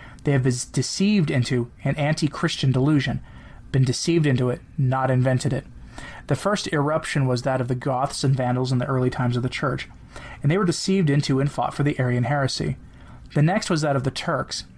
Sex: male